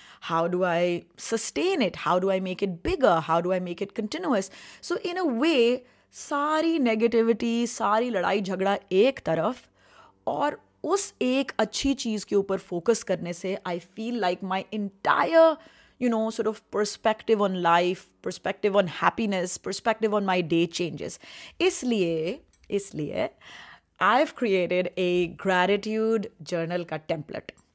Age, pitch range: 30-49, 170-225 Hz